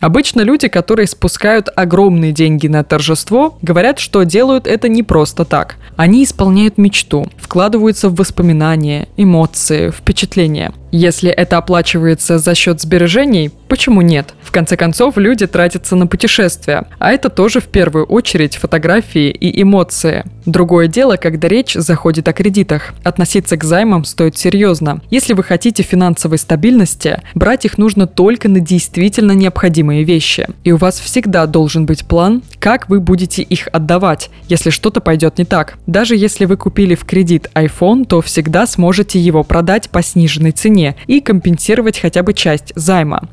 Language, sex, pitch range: Russian, female, 165-205 Hz